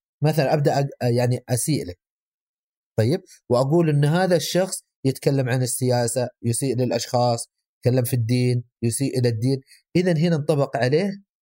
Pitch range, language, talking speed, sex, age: 115-155 Hz, Arabic, 125 wpm, male, 30-49